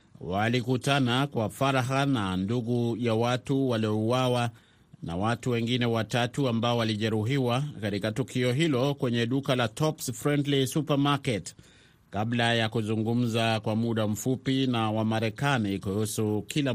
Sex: male